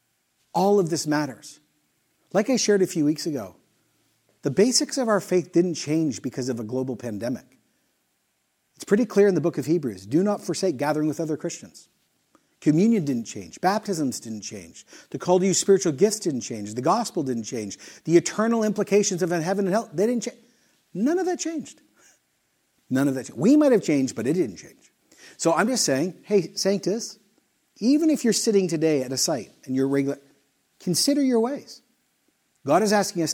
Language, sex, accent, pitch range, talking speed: English, male, American, 130-205 Hz, 190 wpm